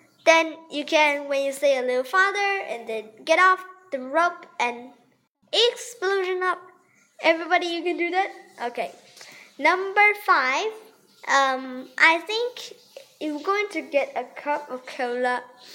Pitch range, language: 260-365 Hz, Chinese